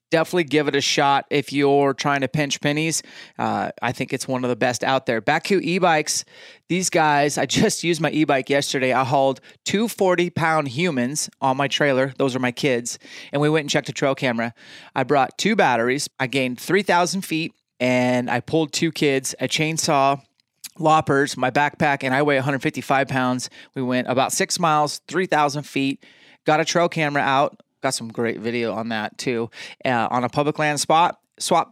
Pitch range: 130-160 Hz